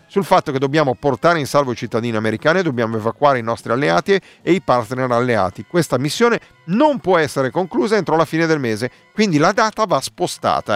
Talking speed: 195 wpm